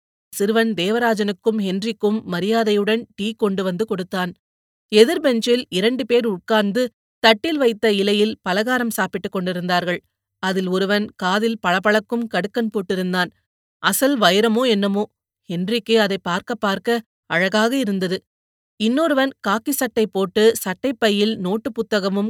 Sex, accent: female, native